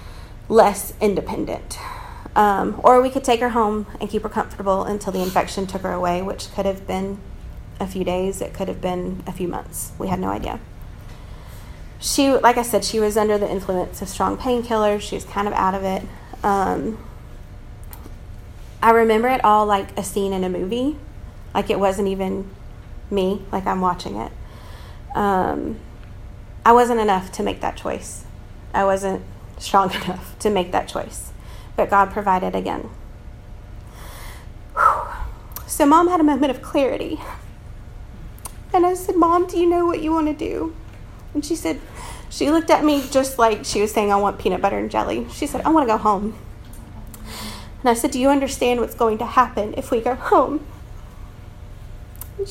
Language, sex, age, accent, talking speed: English, female, 30-49, American, 175 wpm